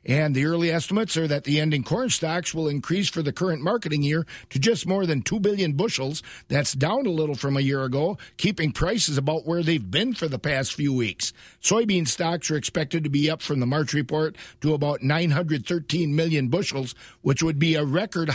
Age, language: 50-69, English